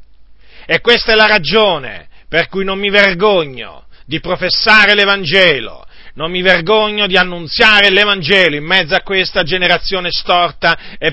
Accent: native